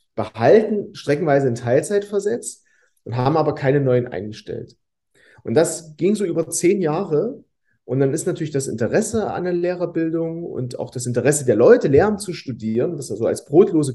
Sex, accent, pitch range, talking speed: male, German, 120-160 Hz, 175 wpm